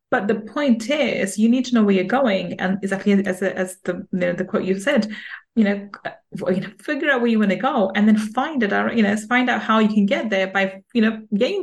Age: 20-39